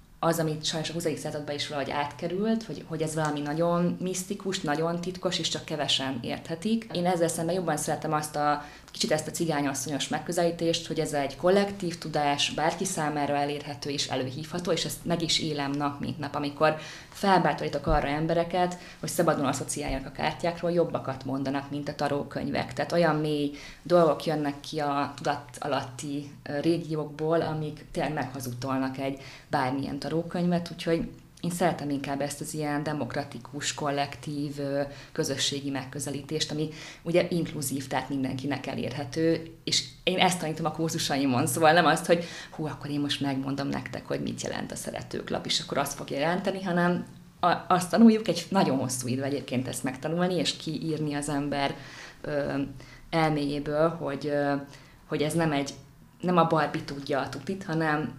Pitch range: 140-165 Hz